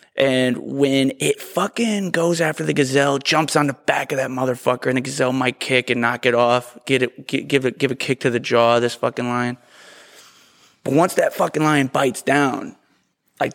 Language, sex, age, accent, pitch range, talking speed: English, male, 20-39, American, 125-165 Hz, 205 wpm